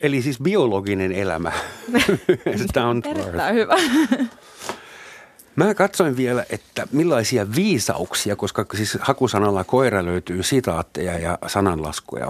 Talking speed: 100 wpm